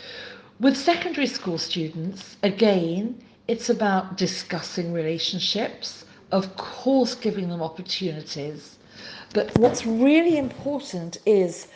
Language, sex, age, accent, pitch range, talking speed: English, female, 50-69, British, 160-220 Hz, 95 wpm